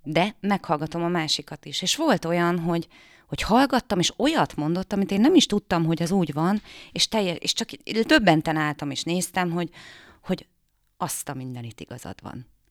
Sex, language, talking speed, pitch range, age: female, Hungarian, 190 wpm, 160-205 Hz, 30-49